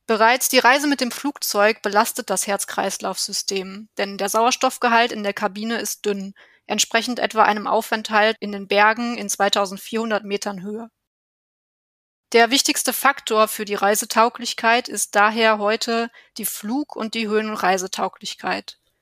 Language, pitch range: German, 205-240 Hz